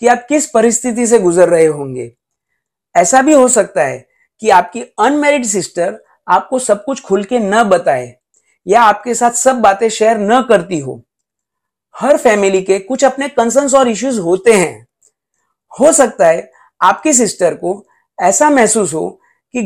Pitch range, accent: 180-255 Hz, native